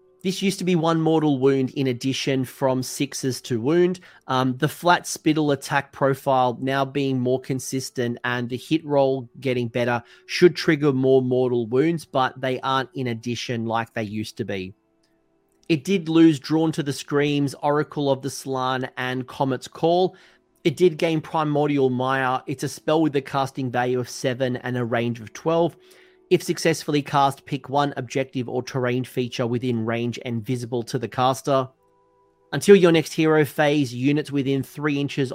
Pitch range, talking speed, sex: 125-150 Hz, 175 wpm, male